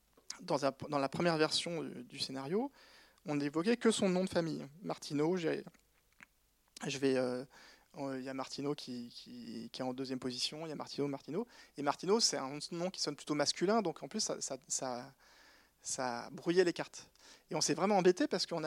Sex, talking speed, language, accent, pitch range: male, 185 wpm, French, French, 135-180 Hz